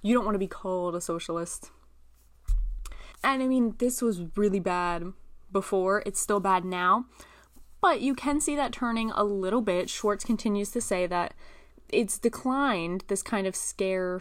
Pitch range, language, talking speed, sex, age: 180-235 Hz, English, 170 wpm, female, 20-39